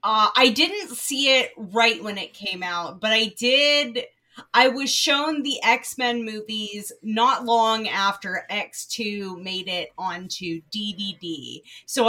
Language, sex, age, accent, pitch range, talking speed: English, female, 30-49, American, 195-245 Hz, 140 wpm